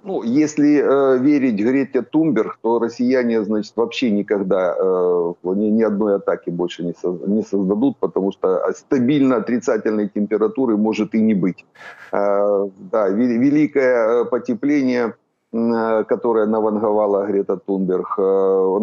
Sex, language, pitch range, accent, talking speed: male, Ukrainian, 100-125 Hz, native, 135 wpm